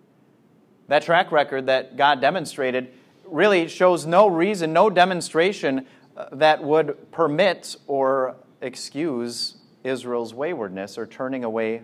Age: 30-49